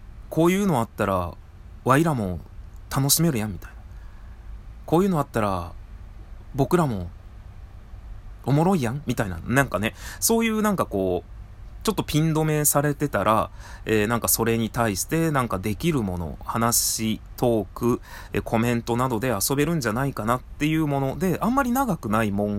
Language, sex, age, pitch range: Japanese, male, 30-49, 95-150 Hz